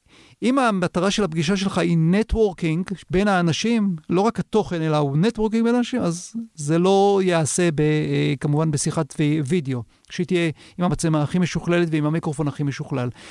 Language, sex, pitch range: Hebrew, male, 155-200 Hz